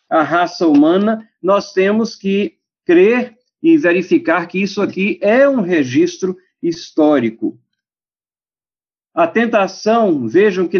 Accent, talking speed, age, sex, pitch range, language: Brazilian, 110 wpm, 50-69, male, 190-310 Hz, Portuguese